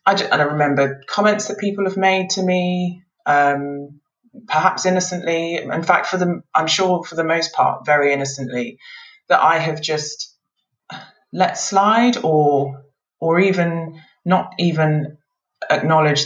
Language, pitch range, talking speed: English, 135-165 Hz, 140 wpm